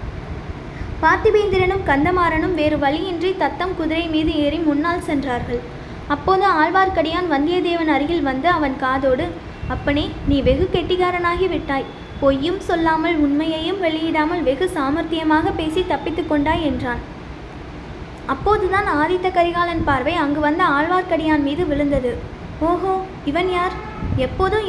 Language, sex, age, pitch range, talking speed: Tamil, female, 20-39, 295-360 Hz, 110 wpm